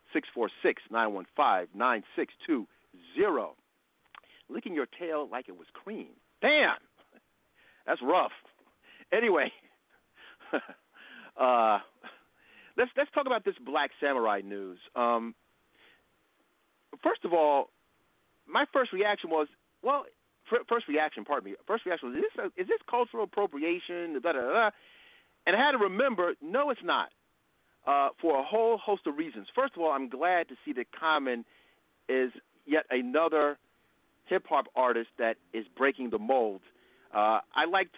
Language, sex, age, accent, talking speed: English, male, 50-69, American, 135 wpm